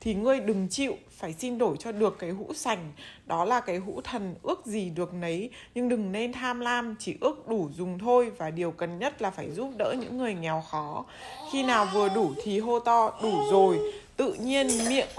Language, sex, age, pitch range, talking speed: Vietnamese, female, 20-39, 195-255 Hz, 215 wpm